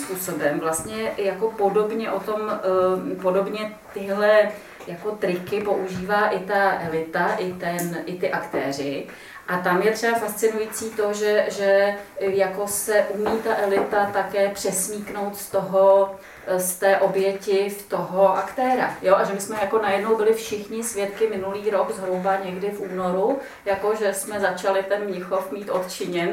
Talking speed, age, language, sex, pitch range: 150 wpm, 30-49, Czech, female, 185-210 Hz